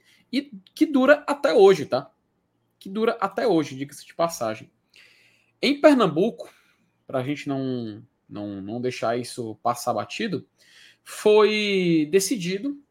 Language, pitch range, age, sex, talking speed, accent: Portuguese, 150-205 Hz, 20-39, male, 115 wpm, Brazilian